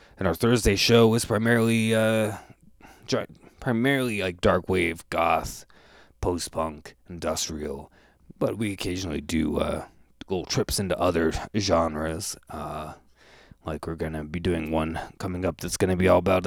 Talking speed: 150 wpm